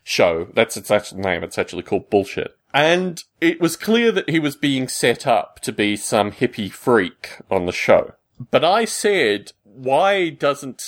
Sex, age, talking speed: male, 30-49, 175 wpm